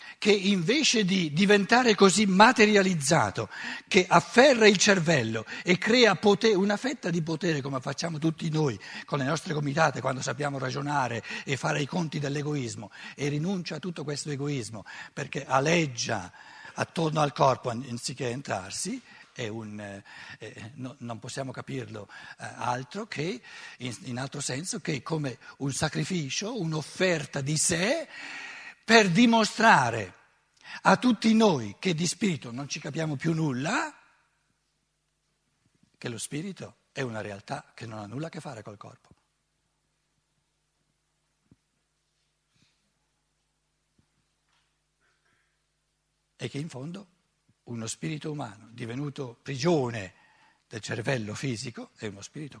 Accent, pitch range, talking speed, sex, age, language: native, 130-185 Hz, 120 wpm, male, 60-79, Italian